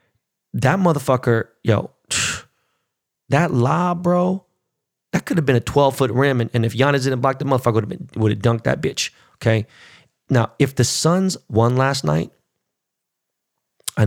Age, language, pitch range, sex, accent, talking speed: 30-49, English, 110-140 Hz, male, American, 165 wpm